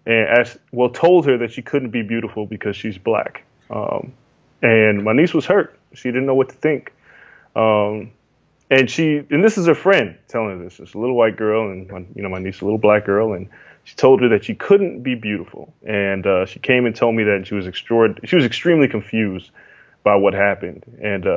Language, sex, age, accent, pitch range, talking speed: English, male, 20-39, American, 105-125 Hz, 220 wpm